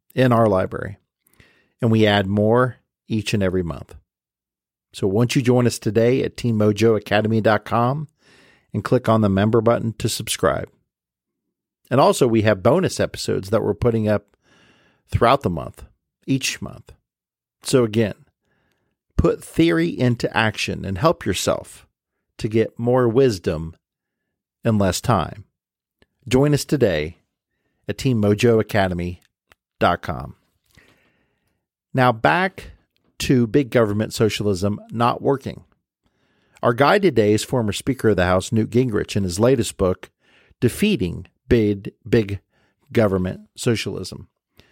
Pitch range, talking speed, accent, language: 100-120 Hz, 125 wpm, American, English